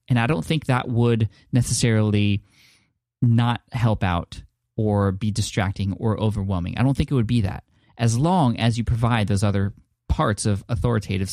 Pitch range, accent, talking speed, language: 100-120 Hz, American, 170 wpm, English